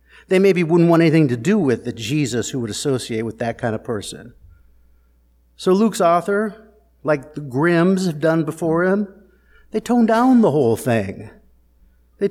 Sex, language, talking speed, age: male, English, 170 wpm, 50-69